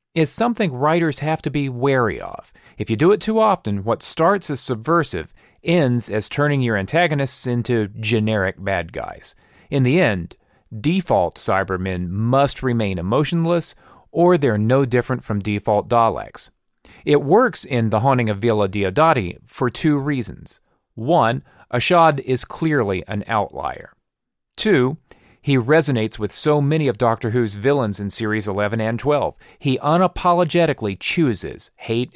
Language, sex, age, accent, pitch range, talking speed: English, male, 40-59, American, 110-150 Hz, 145 wpm